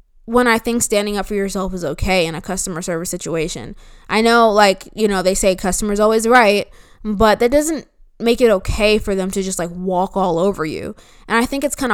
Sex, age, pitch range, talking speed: female, 20-39, 185-215 Hz, 220 wpm